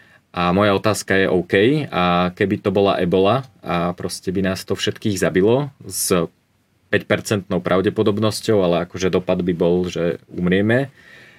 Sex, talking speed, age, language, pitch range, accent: male, 140 wpm, 30-49, Czech, 90-105 Hz, Slovak